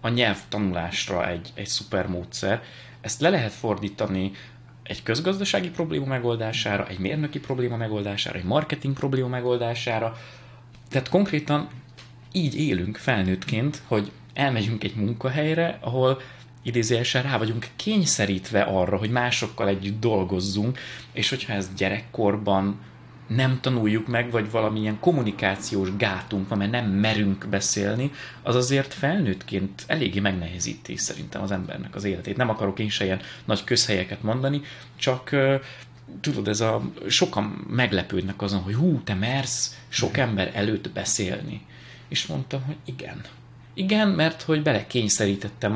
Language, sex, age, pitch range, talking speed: Hungarian, male, 20-39, 100-130 Hz, 130 wpm